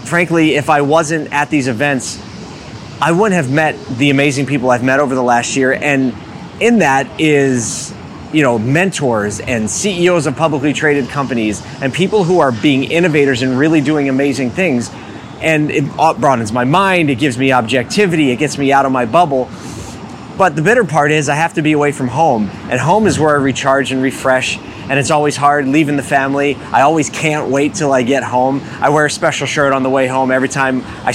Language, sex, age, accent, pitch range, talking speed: English, male, 30-49, American, 130-155 Hz, 205 wpm